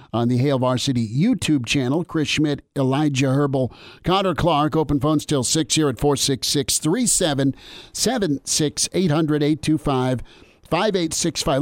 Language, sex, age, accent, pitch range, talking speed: English, male, 50-69, American, 130-155 Hz, 115 wpm